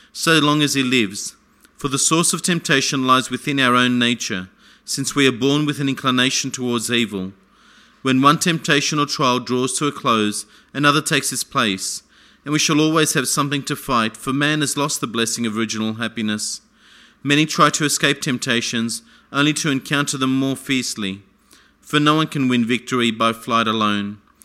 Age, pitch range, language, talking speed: 40-59, 120-145 Hz, English, 180 wpm